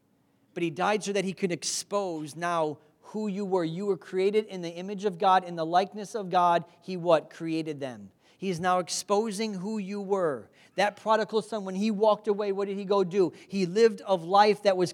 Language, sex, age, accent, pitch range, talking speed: English, male, 40-59, American, 185-230 Hz, 215 wpm